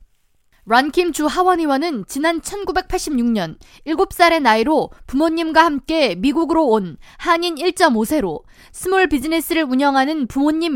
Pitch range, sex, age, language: 245-345 Hz, female, 20-39, Korean